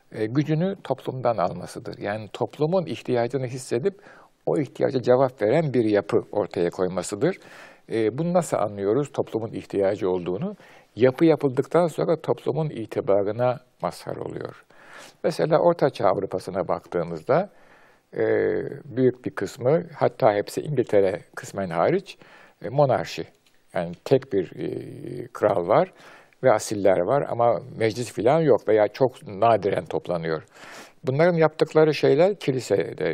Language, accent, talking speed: Turkish, native, 110 wpm